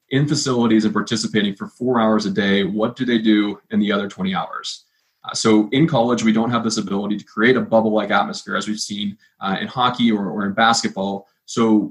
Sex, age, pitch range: male, 20-39, 105-125 Hz